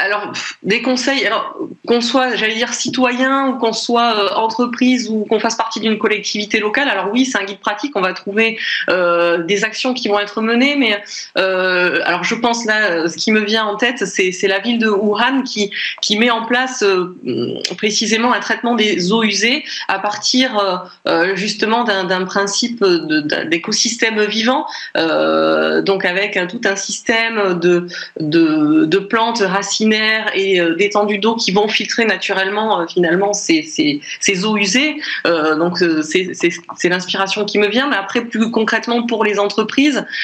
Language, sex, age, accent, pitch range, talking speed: French, female, 20-39, French, 195-235 Hz, 180 wpm